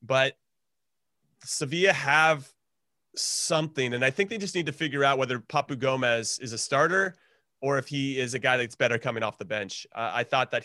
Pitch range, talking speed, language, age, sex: 120-155 Hz, 195 wpm, English, 30-49, male